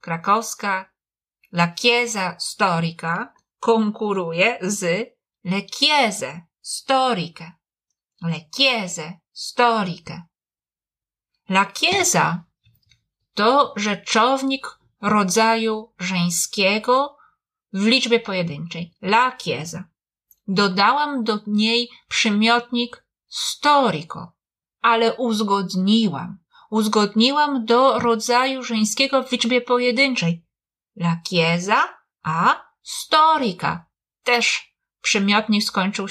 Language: Italian